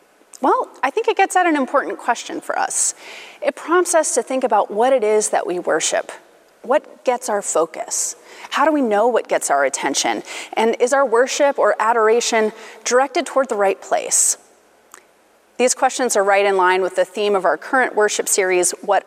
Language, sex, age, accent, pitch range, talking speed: English, female, 30-49, American, 210-335 Hz, 190 wpm